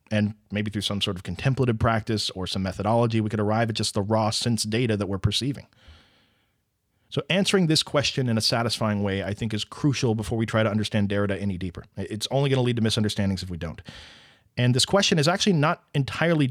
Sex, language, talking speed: male, English, 220 wpm